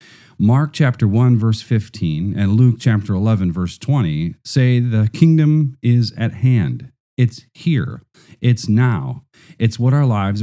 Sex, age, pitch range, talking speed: male, 40-59, 100-130 Hz, 145 wpm